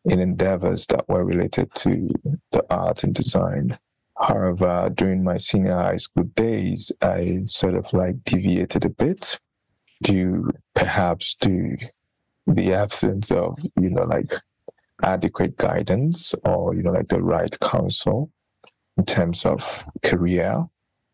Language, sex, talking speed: English, male, 135 wpm